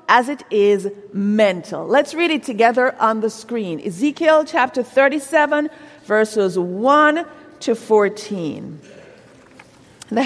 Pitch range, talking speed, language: 205-300 Hz, 110 wpm, English